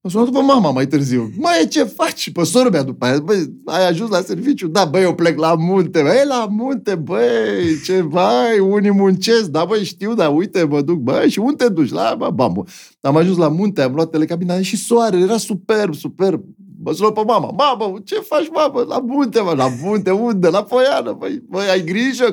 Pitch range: 145-205 Hz